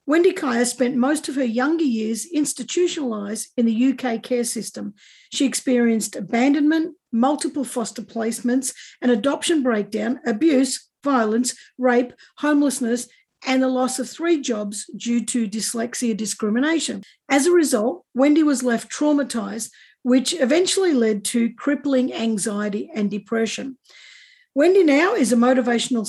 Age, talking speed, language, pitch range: 50-69, 130 wpm, English, 230-285 Hz